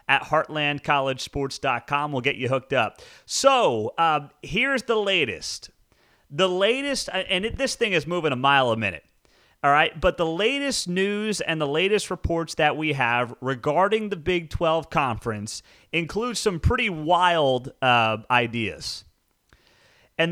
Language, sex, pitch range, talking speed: English, male, 140-195 Hz, 140 wpm